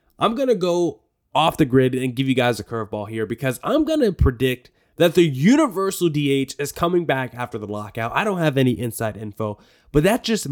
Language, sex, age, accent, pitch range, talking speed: English, male, 20-39, American, 120-165 Hz, 215 wpm